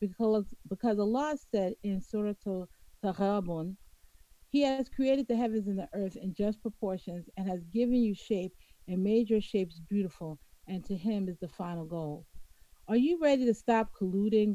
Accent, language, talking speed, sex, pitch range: American, English, 170 wpm, female, 180-230 Hz